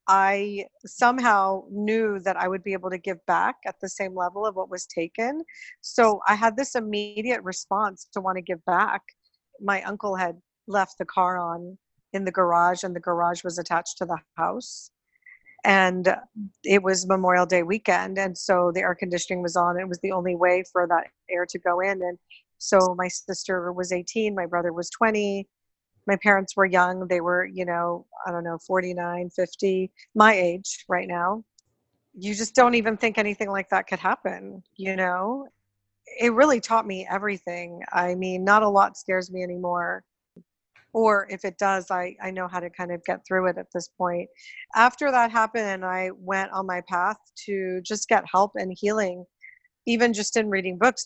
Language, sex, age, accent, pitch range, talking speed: English, female, 40-59, American, 180-210 Hz, 190 wpm